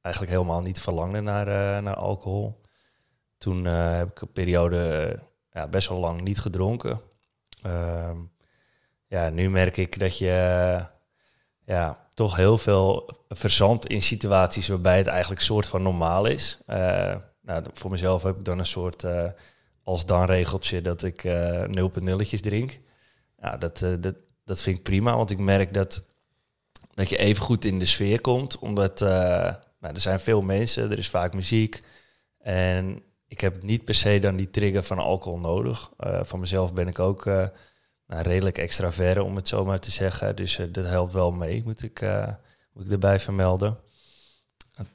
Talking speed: 180 wpm